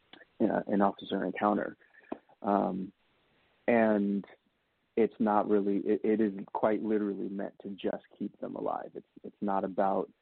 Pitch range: 100-110 Hz